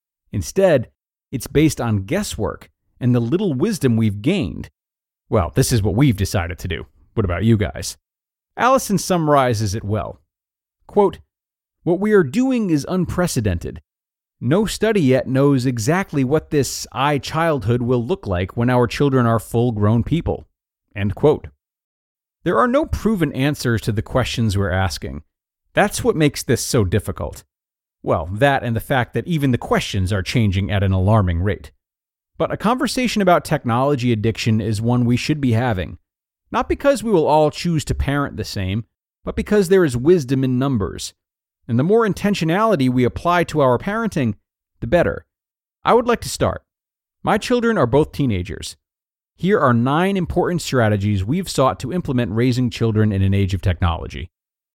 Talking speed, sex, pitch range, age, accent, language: 165 wpm, male, 100-155 Hz, 30-49, American, English